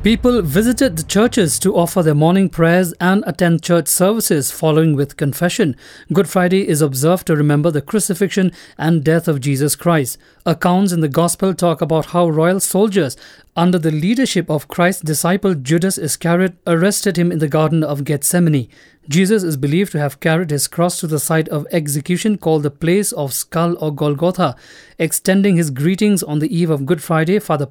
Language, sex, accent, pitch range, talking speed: English, male, Indian, 155-185 Hz, 180 wpm